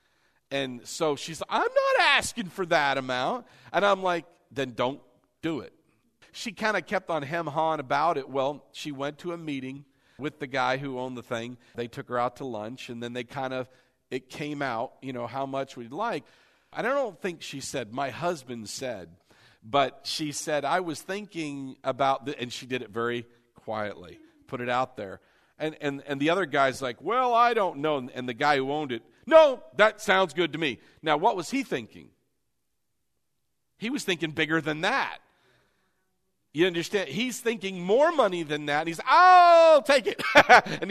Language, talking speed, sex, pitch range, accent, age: English, 195 wpm, male, 130-190 Hz, American, 50-69